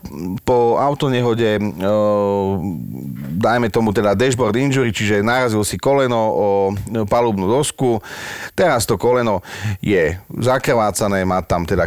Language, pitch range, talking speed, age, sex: Slovak, 100-120 Hz, 110 wpm, 40-59, male